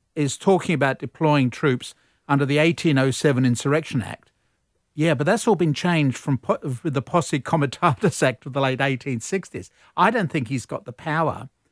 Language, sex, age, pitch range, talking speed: English, male, 50-69, 130-165 Hz, 165 wpm